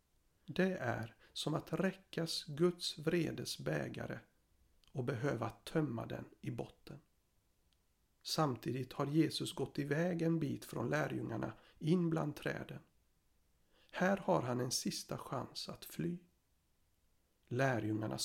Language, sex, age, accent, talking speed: Swedish, male, 60-79, native, 115 wpm